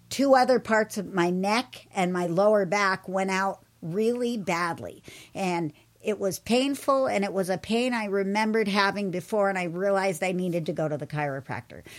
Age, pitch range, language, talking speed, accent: 50-69, 185-235 Hz, English, 185 wpm, American